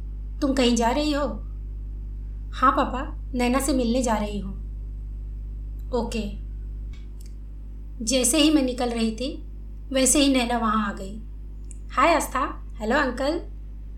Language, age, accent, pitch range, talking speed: Hindi, 20-39, native, 215-260 Hz, 130 wpm